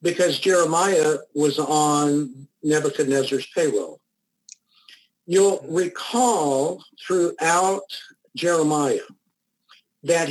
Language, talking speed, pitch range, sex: English, 65 wpm, 145-215 Hz, male